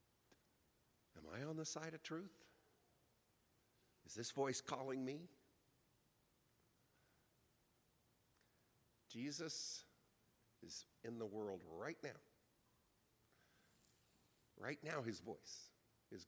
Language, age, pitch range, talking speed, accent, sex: English, 50-69, 85-120 Hz, 90 wpm, American, male